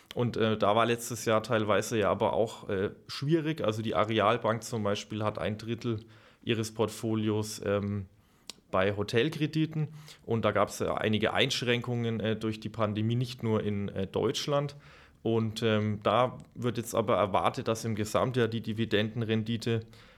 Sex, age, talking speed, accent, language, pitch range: male, 30-49, 160 wpm, German, German, 105-120 Hz